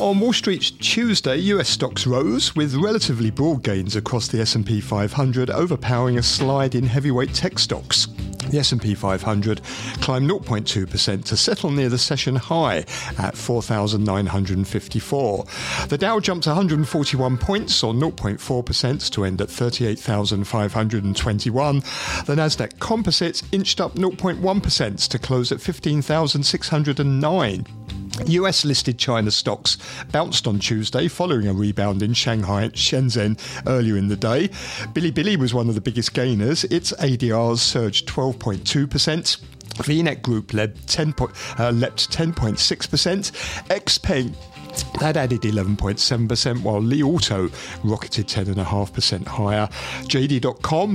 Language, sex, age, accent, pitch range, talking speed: English, male, 50-69, British, 105-150 Hz, 115 wpm